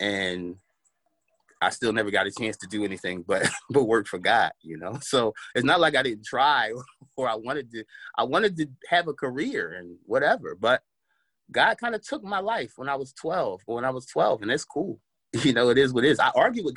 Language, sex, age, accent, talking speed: English, male, 30-49, American, 235 wpm